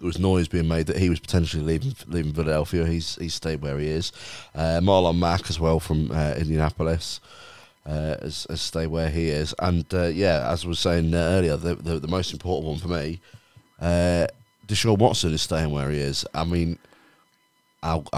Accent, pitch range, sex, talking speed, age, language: British, 80-90 Hz, male, 200 wpm, 30-49, English